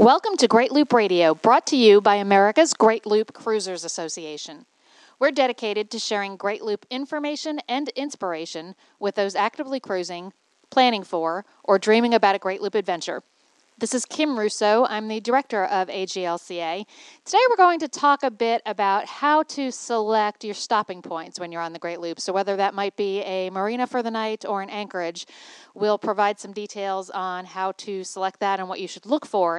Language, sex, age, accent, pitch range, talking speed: English, female, 40-59, American, 185-235 Hz, 190 wpm